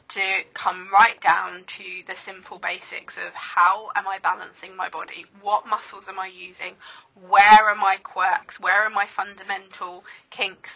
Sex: female